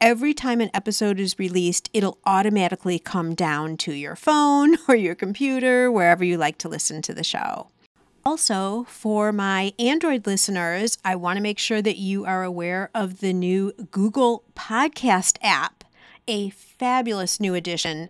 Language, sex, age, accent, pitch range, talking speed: English, female, 50-69, American, 180-255 Hz, 155 wpm